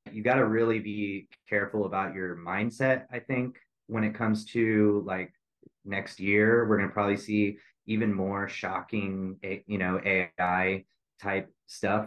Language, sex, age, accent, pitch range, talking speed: English, male, 20-39, American, 95-105 Hz, 155 wpm